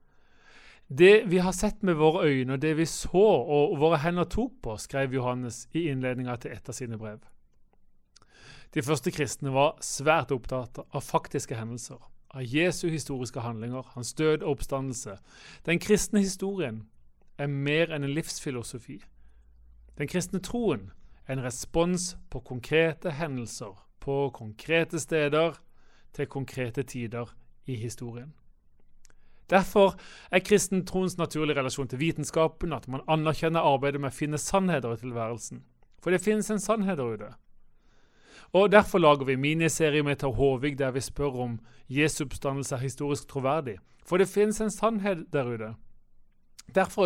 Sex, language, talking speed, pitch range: male, English, 150 wpm, 130-165 Hz